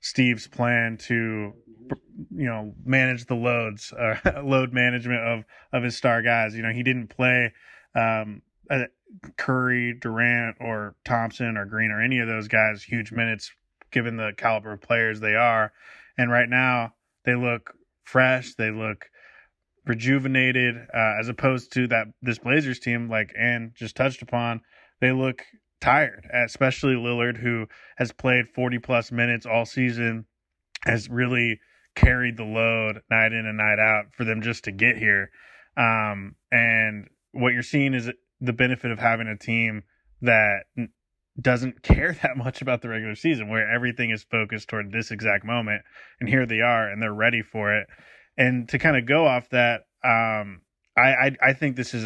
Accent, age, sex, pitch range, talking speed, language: American, 20-39, male, 110-125 Hz, 170 wpm, English